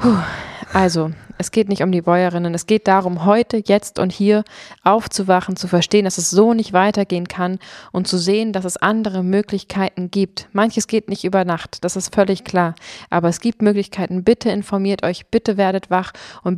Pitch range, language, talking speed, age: 175-205 Hz, German, 185 wpm, 20-39